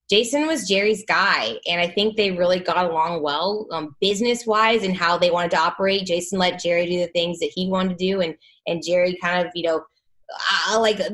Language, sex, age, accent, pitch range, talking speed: English, female, 20-39, American, 180-240 Hz, 220 wpm